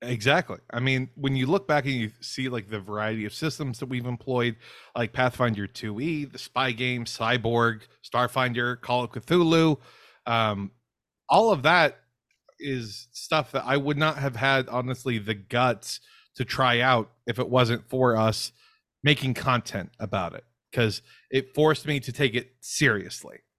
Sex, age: male, 30-49